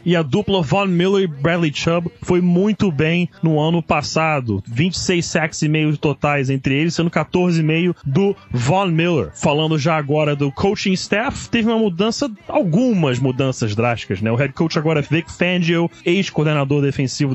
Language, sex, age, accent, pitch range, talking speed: Portuguese, male, 20-39, Brazilian, 145-175 Hz, 175 wpm